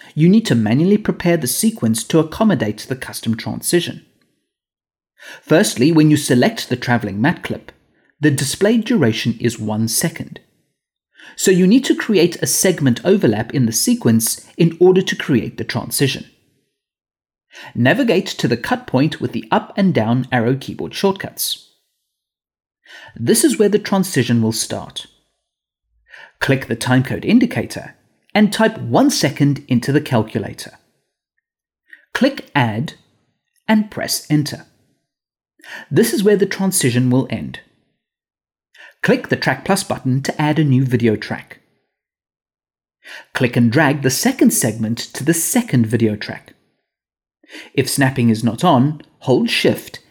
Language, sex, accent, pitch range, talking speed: English, male, British, 120-190 Hz, 140 wpm